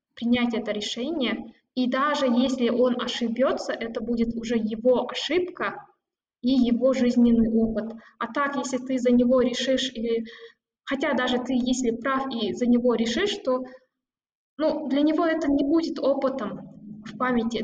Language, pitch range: Russian, 230-265 Hz